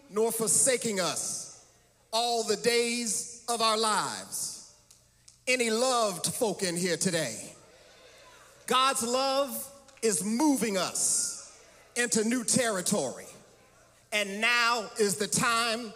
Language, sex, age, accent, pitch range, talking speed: English, male, 40-59, American, 180-240 Hz, 105 wpm